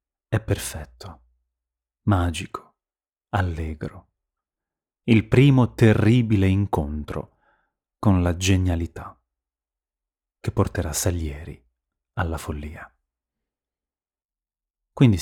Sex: male